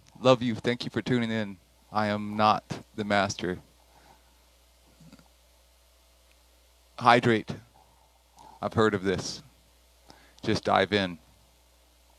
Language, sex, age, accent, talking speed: English, male, 30-49, American, 100 wpm